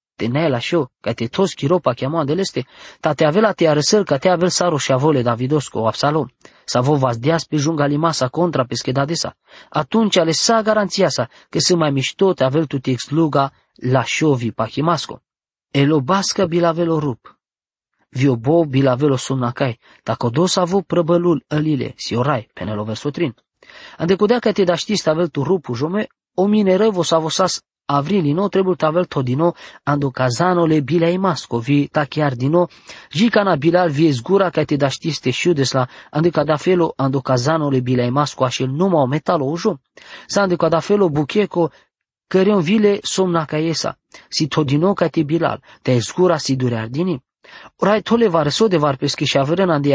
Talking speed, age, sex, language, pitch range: 160 wpm, 20-39, male, English, 135-180 Hz